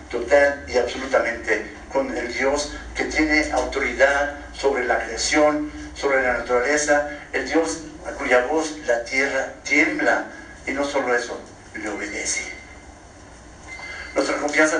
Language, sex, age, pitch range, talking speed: Spanish, male, 50-69, 105-150 Hz, 125 wpm